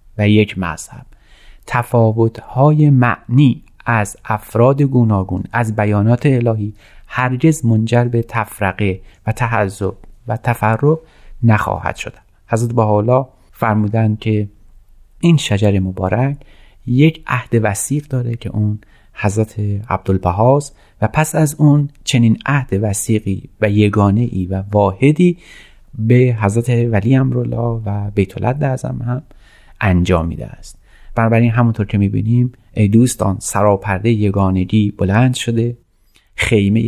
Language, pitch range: Persian, 100-125 Hz